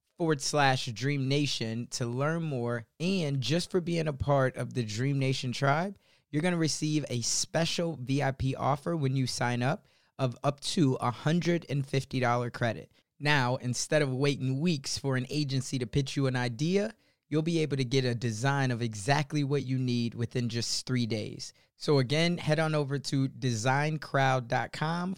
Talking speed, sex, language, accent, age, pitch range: 170 wpm, male, English, American, 20-39, 130-165 Hz